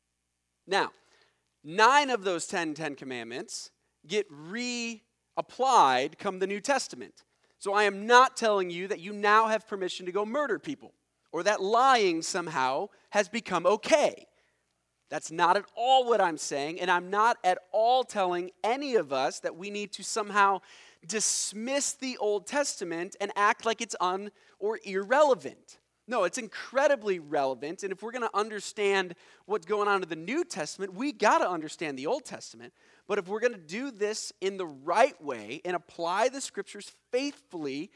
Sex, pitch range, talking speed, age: male, 180-230 Hz, 170 wpm, 30-49